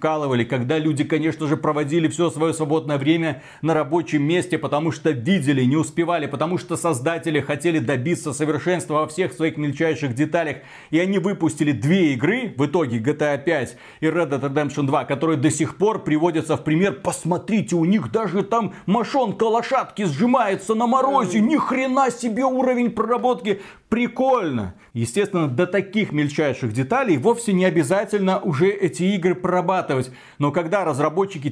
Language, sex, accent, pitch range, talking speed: Russian, male, native, 150-190 Hz, 150 wpm